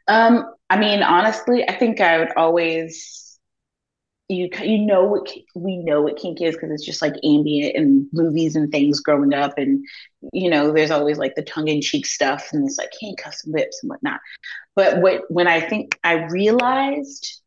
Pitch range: 150-200 Hz